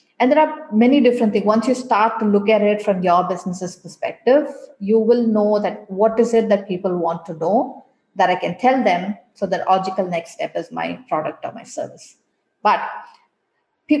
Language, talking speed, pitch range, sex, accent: English, 200 wpm, 190-240 Hz, female, Indian